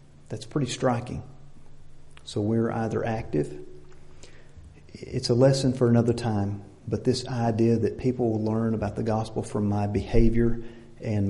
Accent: American